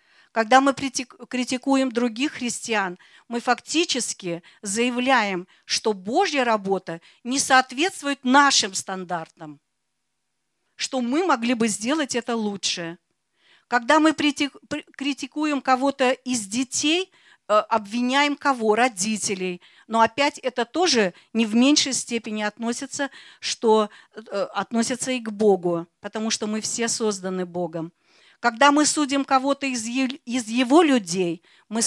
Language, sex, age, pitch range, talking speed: Russian, female, 40-59, 210-270 Hz, 110 wpm